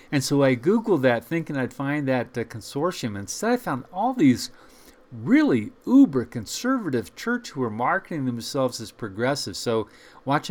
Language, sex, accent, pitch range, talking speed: English, male, American, 120-150 Hz, 155 wpm